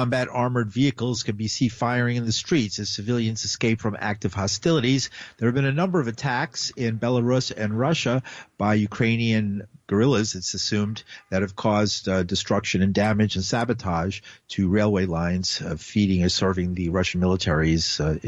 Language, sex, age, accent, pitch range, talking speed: English, male, 50-69, American, 100-130 Hz, 170 wpm